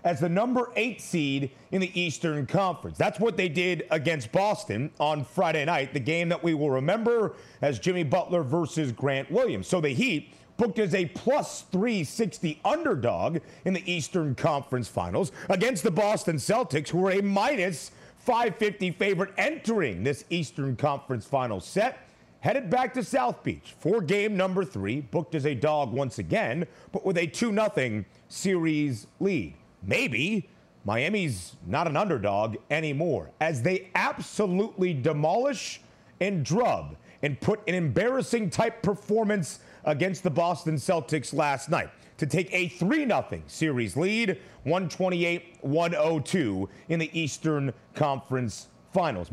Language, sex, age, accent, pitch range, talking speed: English, male, 40-59, American, 150-195 Hz, 145 wpm